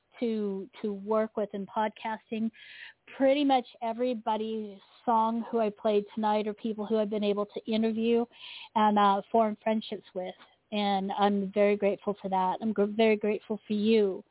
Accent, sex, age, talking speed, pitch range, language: American, female, 40-59, 165 wpm, 200-235 Hz, English